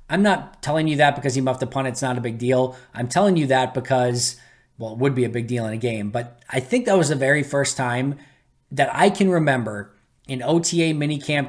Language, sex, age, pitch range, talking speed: English, male, 20-39, 125-155 Hz, 240 wpm